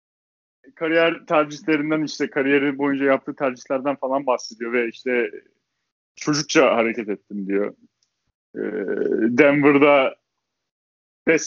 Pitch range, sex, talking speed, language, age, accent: 135-180 Hz, male, 95 wpm, Turkish, 30-49, native